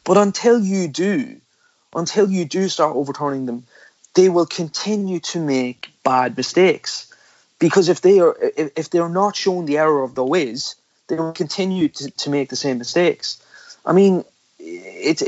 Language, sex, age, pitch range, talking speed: English, male, 20-39, 125-175 Hz, 170 wpm